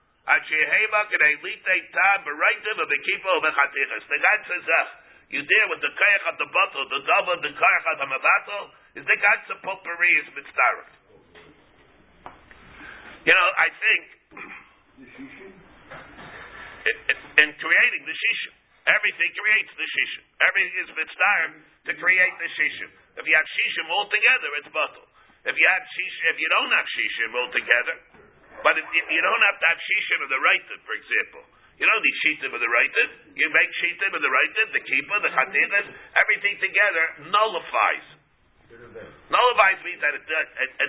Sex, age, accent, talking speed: male, 50-69, American, 115 wpm